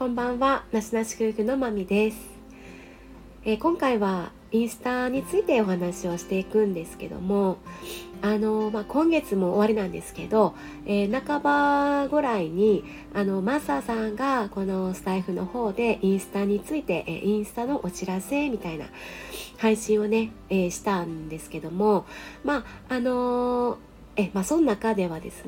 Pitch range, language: 185-235 Hz, Japanese